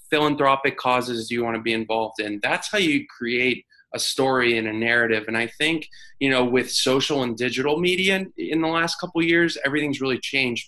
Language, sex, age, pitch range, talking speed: English, male, 20-39, 115-140 Hz, 210 wpm